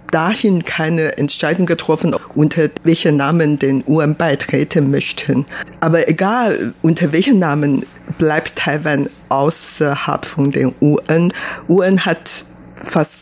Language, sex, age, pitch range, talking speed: German, female, 50-69, 145-170 Hz, 115 wpm